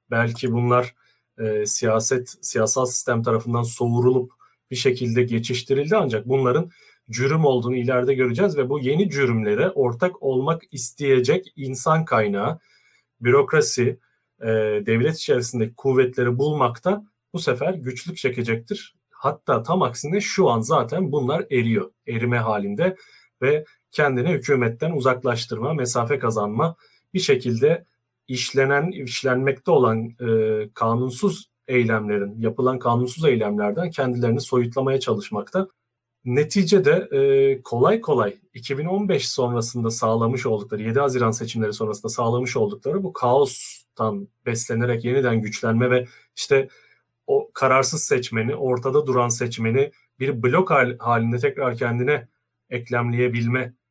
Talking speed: 110 wpm